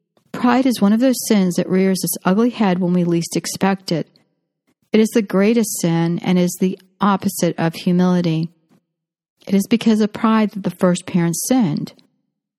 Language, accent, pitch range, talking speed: English, American, 180-215 Hz, 175 wpm